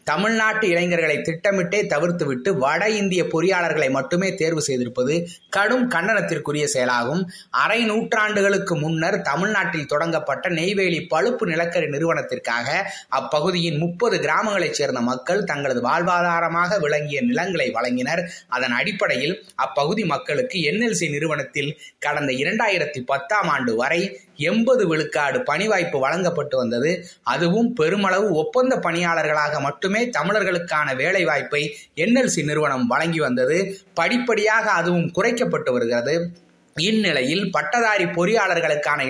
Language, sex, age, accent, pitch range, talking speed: Tamil, male, 20-39, native, 155-210 Hz, 105 wpm